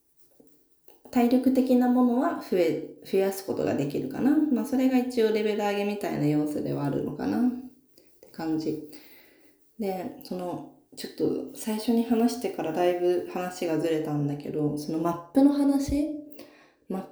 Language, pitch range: Japanese, 170-250 Hz